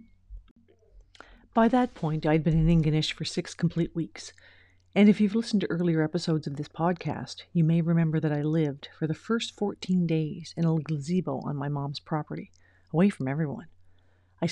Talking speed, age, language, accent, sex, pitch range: 180 wpm, 50-69, English, American, female, 150-180 Hz